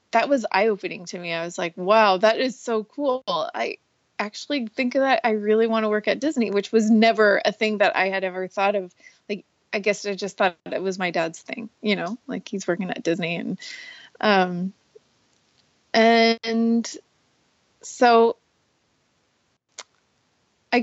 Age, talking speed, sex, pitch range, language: 20-39, 170 wpm, female, 195-235 Hz, English